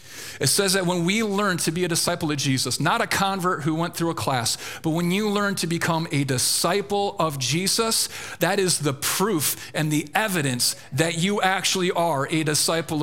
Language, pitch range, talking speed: English, 120-170 Hz, 200 wpm